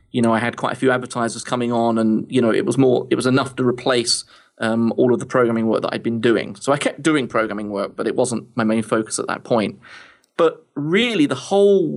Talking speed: 260 wpm